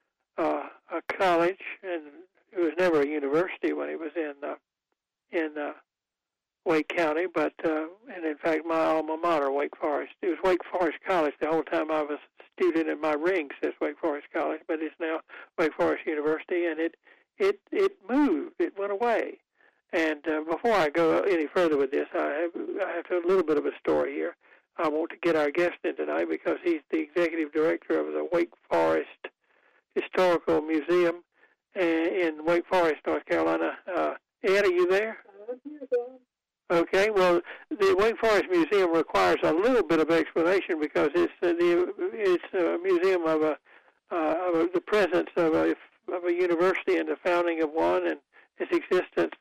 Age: 60-79